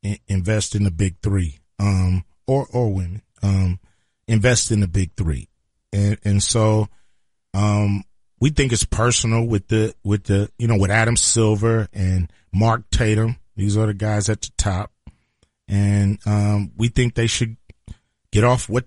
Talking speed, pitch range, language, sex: 160 wpm, 100-120 Hz, English, male